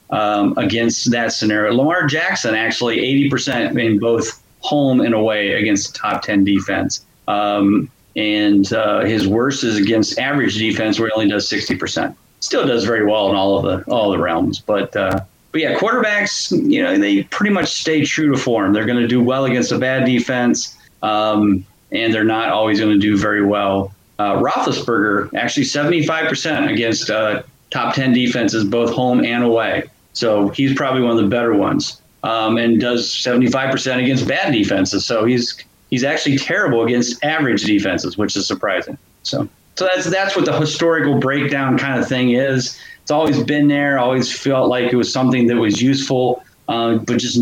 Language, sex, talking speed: English, male, 180 wpm